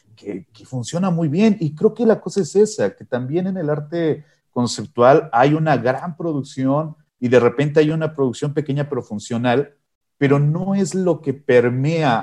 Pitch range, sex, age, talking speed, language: 125-160 Hz, male, 40-59, 180 wpm, Spanish